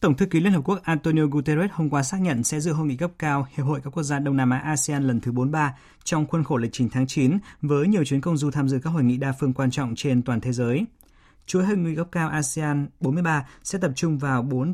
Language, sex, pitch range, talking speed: Vietnamese, male, 125-155 Hz, 275 wpm